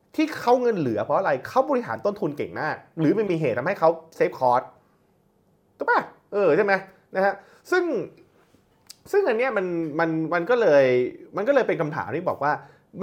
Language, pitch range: Thai, 135-225 Hz